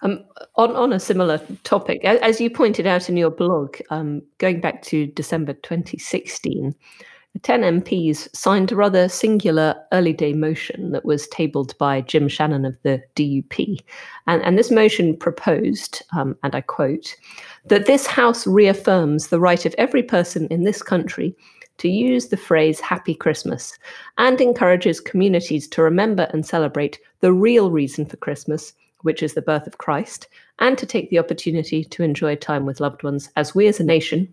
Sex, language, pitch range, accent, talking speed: female, English, 155-200 Hz, British, 175 wpm